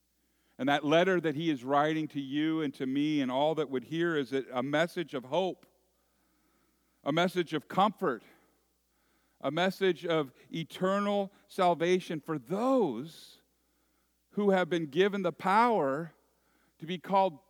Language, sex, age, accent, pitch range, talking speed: English, male, 50-69, American, 120-175 Hz, 145 wpm